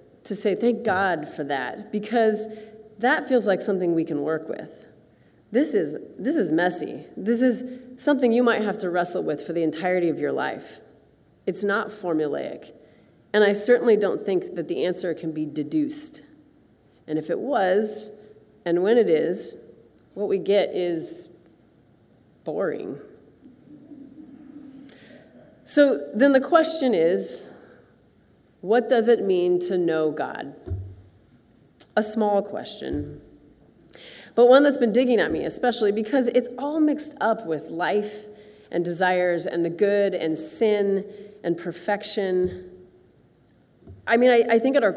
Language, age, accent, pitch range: English, 30-49, American, 180-250 Hz